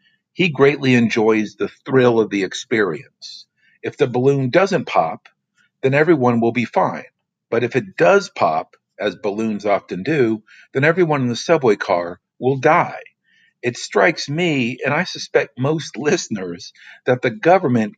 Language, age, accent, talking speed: English, 50-69, American, 155 wpm